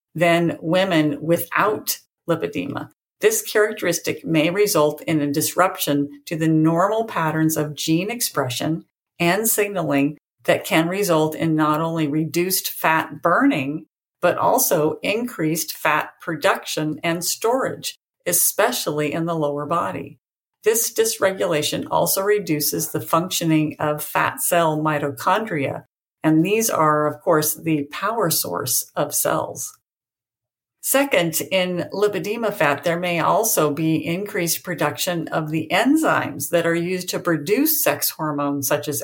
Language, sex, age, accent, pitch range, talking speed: English, female, 50-69, American, 150-180 Hz, 130 wpm